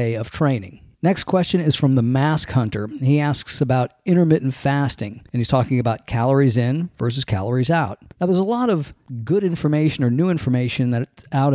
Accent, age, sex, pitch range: American, 40-59, male, 130-160 Hz